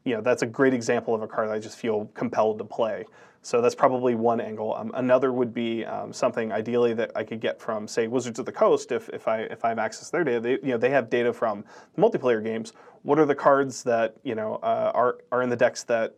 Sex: male